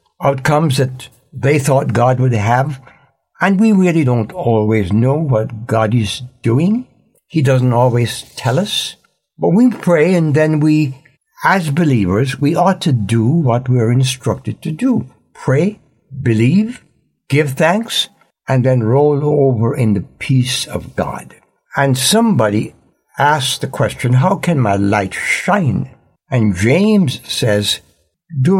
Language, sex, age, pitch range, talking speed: English, male, 60-79, 115-150 Hz, 140 wpm